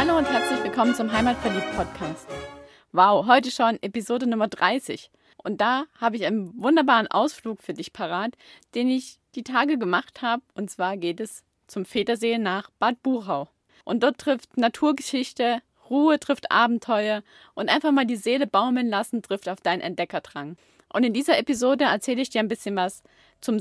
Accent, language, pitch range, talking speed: German, German, 200-260 Hz, 170 wpm